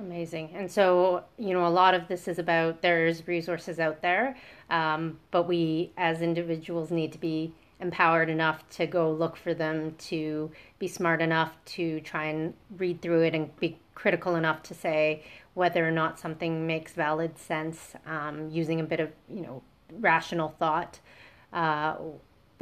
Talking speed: 165 wpm